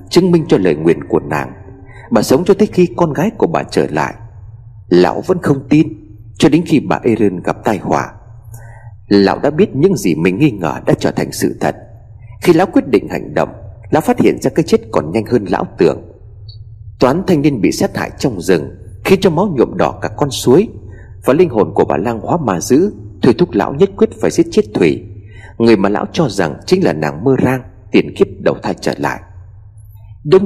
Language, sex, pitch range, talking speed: Vietnamese, male, 105-150 Hz, 220 wpm